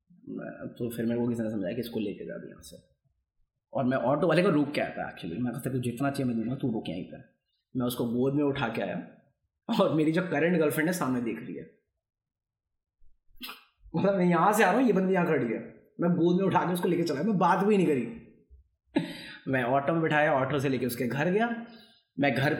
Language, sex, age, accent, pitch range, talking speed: Hindi, male, 20-39, native, 115-185 Hz, 240 wpm